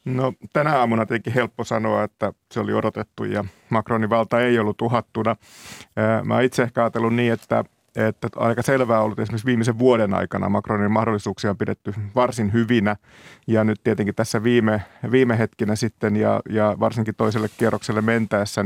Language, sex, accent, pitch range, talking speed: Finnish, male, native, 105-120 Hz, 165 wpm